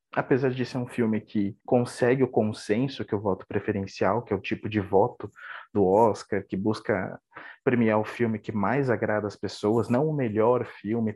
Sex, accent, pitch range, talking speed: male, Brazilian, 110-140 Hz, 190 wpm